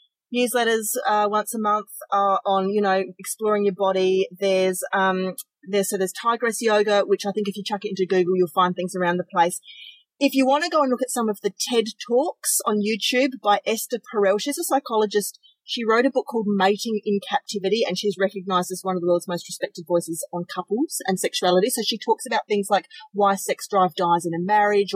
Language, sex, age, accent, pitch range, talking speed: English, female, 30-49, Australian, 185-230 Hz, 220 wpm